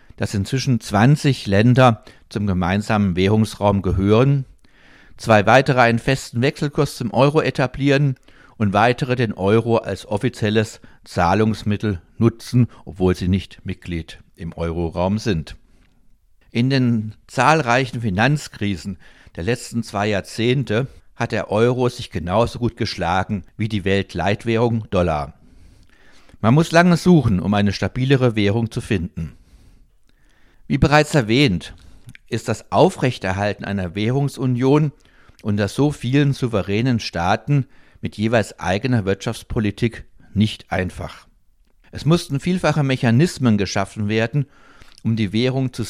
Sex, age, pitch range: male, 60-79, 100-125 Hz